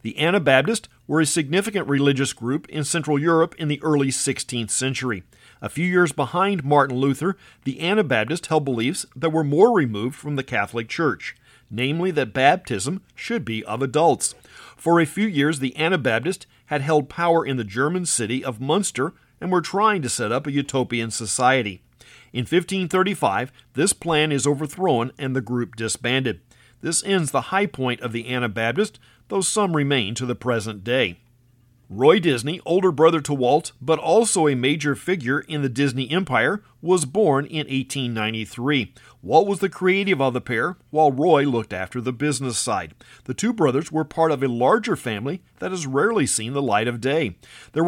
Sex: male